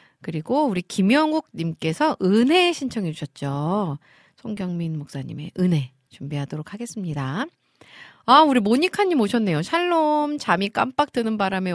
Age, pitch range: 40-59, 160-230 Hz